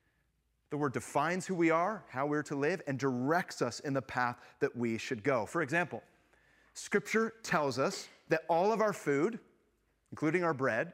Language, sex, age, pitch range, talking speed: English, male, 30-49, 130-165 Hz, 180 wpm